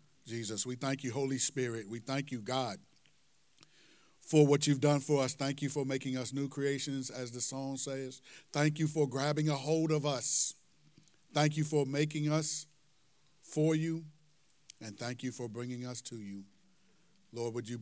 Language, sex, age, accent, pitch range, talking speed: English, male, 50-69, American, 110-130 Hz, 180 wpm